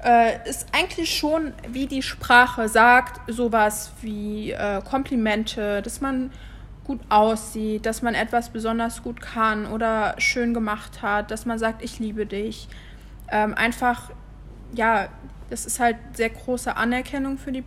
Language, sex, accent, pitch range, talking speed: German, female, German, 215-240 Hz, 145 wpm